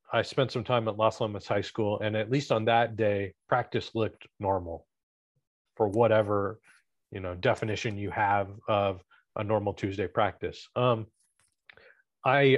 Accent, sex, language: American, male, English